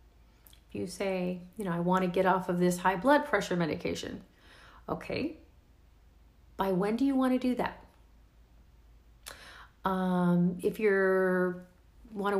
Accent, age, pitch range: American, 40-59, 180-230 Hz